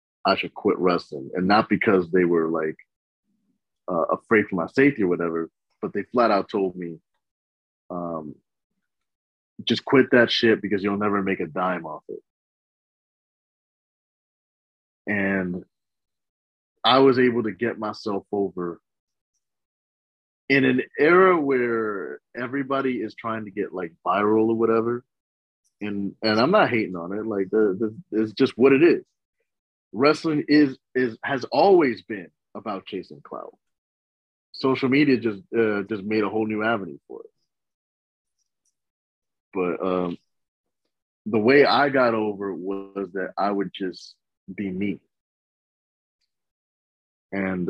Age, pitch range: 30-49, 90-115 Hz